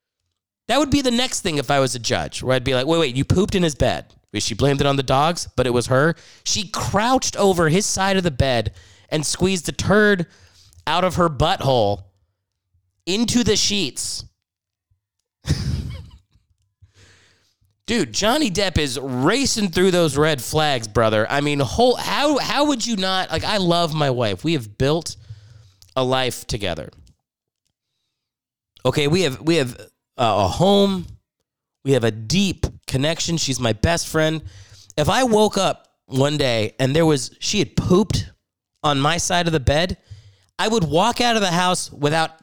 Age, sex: 30-49, male